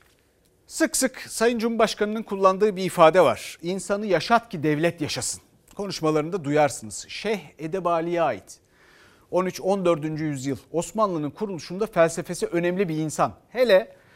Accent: native